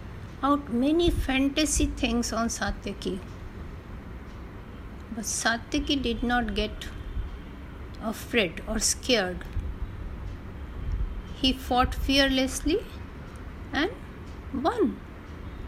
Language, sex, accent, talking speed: Hindi, female, native, 75 wpm